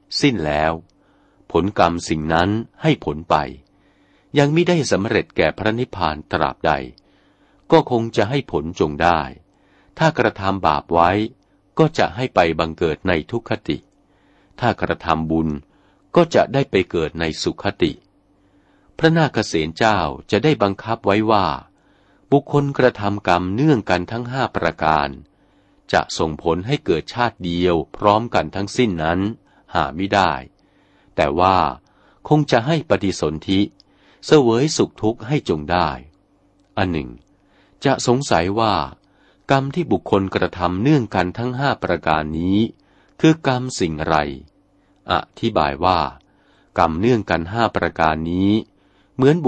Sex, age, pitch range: male, 60-79, 80-120 Hz